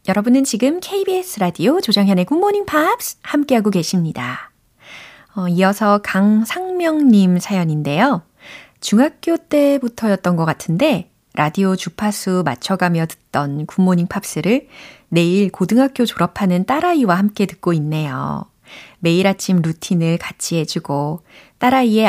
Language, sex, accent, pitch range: Korean, female, native, 165-240 Hz